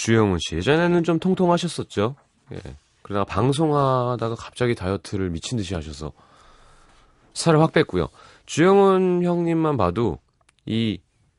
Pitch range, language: 90-140 Hz, Korean